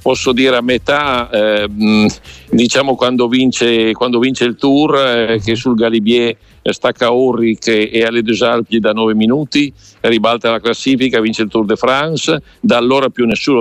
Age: 60-79